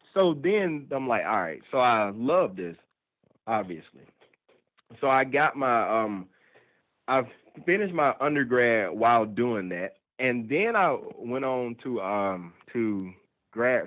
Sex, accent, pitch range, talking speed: male, American, 105-140 Hz, 140 wpm